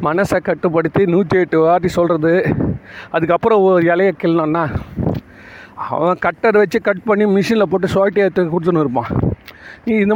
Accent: native